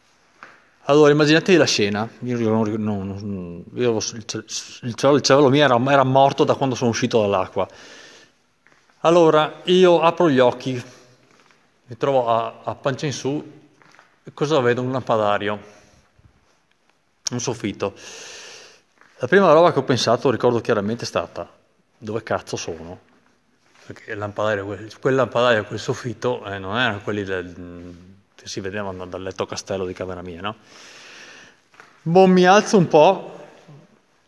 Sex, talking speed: male, 145 wpm